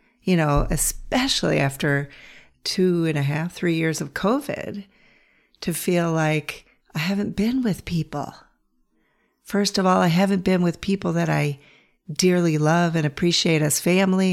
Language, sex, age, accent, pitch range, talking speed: English, female, 50-69, American, 155-195 Hz, 150 wpm